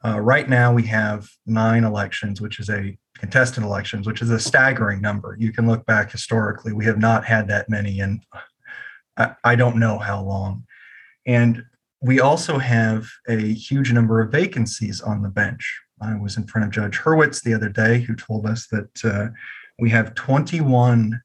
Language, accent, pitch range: English, American, 110-120 Hz